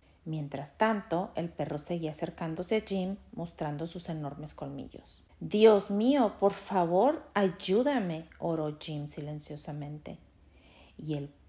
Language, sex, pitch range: Spanish, female, 155-220 Hz